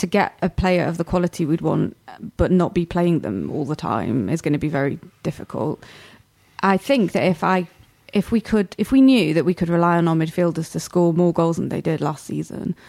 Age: 20-39